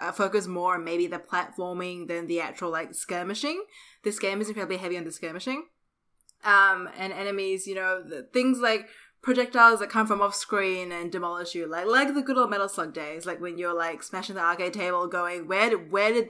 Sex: female